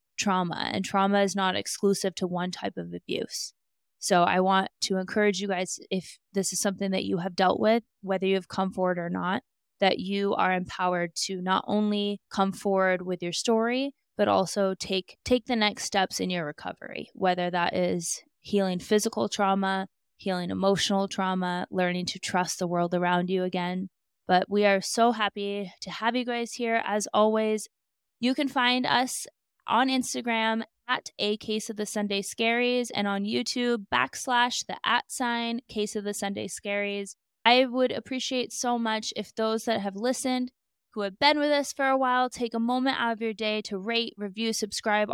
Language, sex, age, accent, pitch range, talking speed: English, female, 20-39, American, 190-230 Hz, 185 wpm